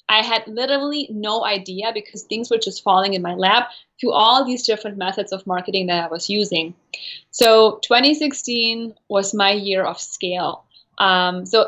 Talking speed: 170 wpm